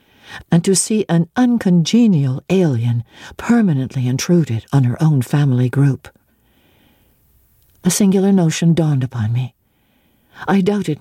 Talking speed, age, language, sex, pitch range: 115 wpm, 60-79, English, female, 140-185 Hz